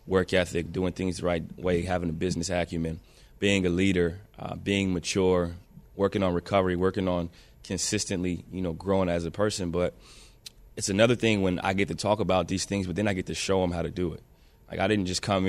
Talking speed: 220 wpm